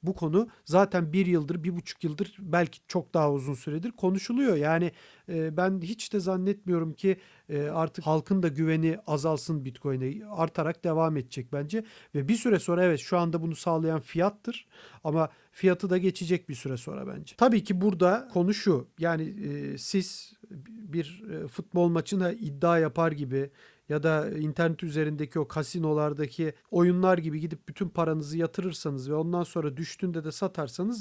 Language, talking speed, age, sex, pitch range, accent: Turkish, 160 wpm, 50-69, male, 155-195 Hz, native